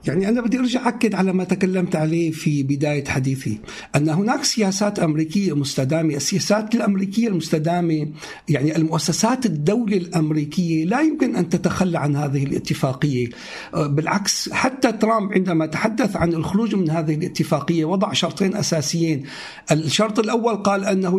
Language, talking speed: Arabic, 135 wpm